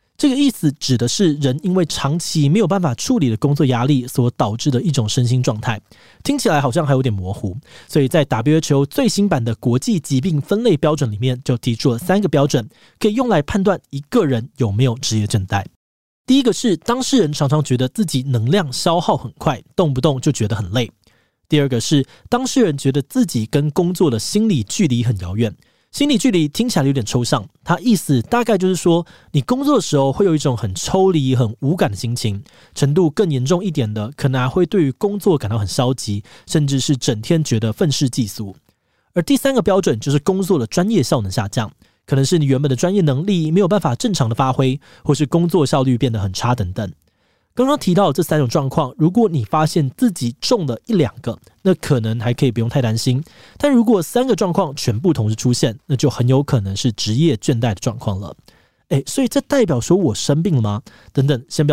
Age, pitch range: 20-39, 120-180 Hz